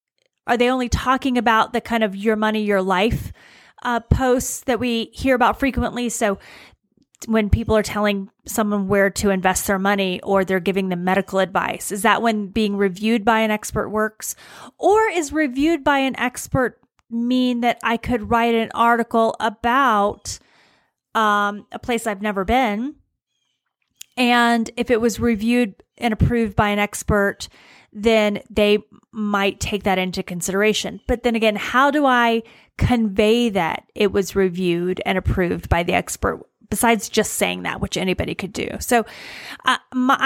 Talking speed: 160 wpm